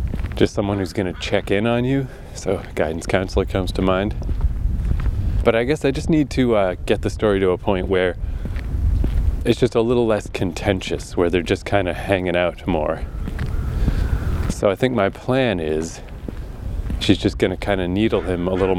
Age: 20-39